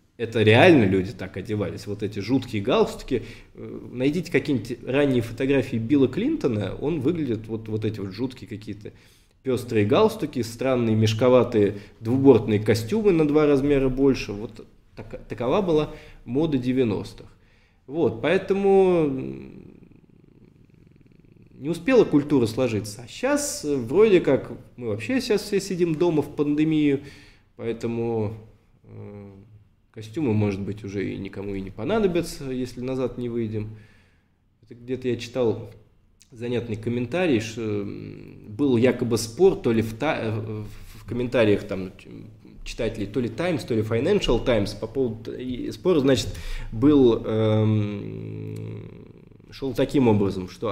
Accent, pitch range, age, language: native, 105-140 Hz, 20-39, Russian